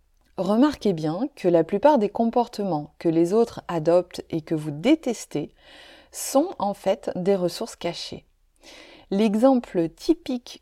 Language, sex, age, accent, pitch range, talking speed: French, female, 30-49, French, 175-245 Hz, 130 wpm